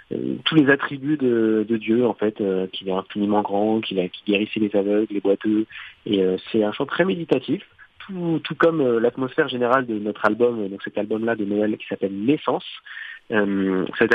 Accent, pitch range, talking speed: French, 105-130 Hz, 195 wpm